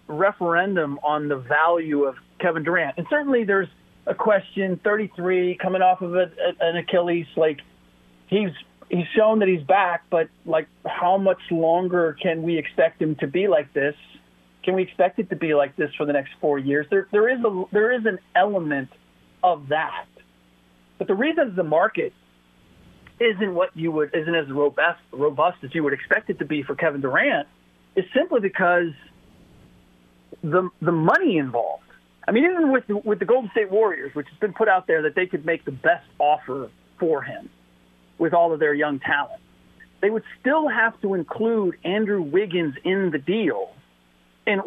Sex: male